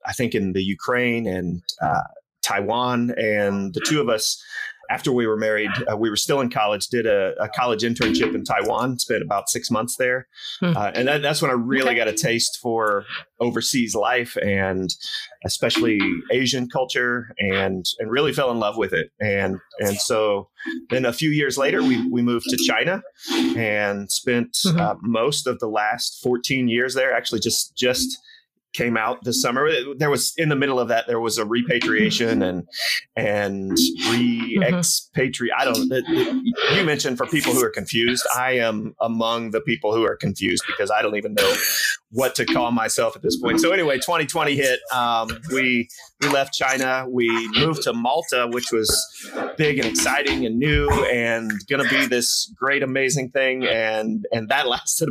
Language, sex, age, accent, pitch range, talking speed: English, male, 30-49, American, 110-140 Hz, 180 wpm